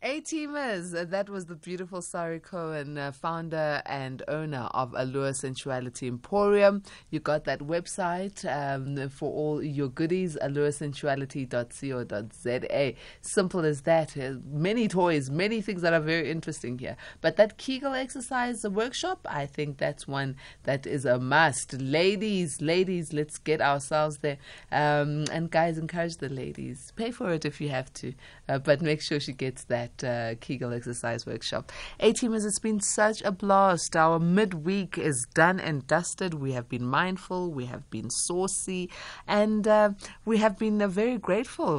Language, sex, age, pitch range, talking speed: English, female, 20-39, 135-185 Hz, 155 wpm